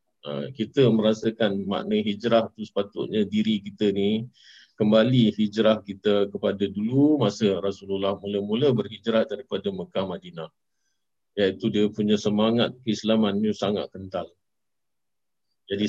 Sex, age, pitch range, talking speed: male, 50-69, 100-115 Hz, 115 wpm